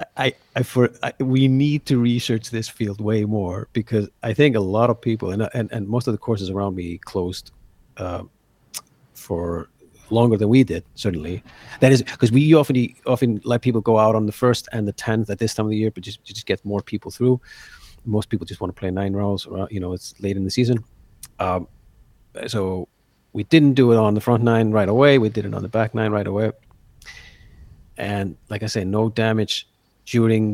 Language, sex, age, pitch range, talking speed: English, male, 40-59, 95-120 Hz, 215 wpm